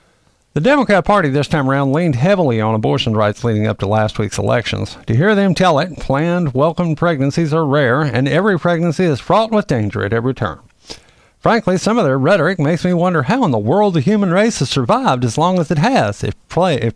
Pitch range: 110-160 Hz